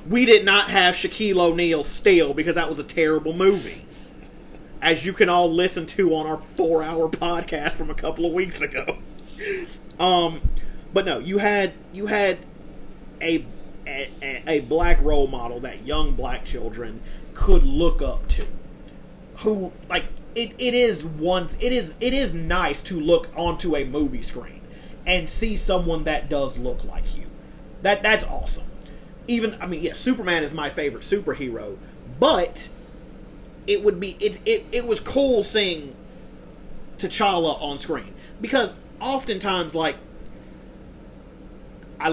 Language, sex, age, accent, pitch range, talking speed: English, male, 30-49, American, 145-195 Hz, 150 wpm